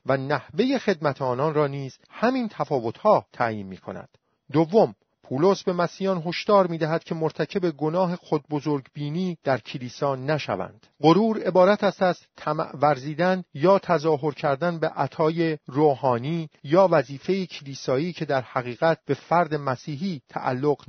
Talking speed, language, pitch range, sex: 130 wpm, Persian, 135-175 Hz, male